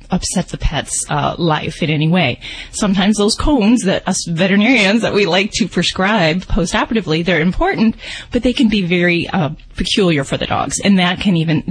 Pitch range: 160-210 Hz